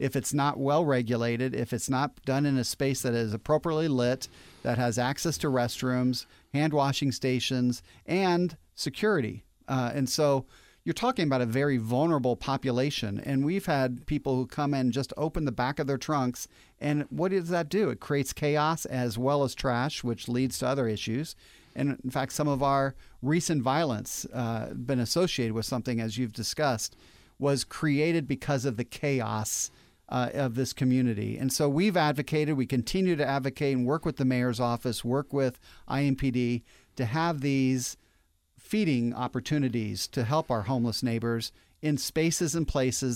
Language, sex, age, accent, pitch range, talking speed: English, male, 40-59, American, 120-145 Hz, 170 wpm